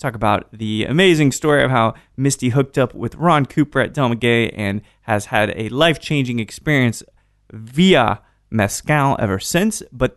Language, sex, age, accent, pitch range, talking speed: English, male, 20-39, American, 105-145 Hz, 155 wpm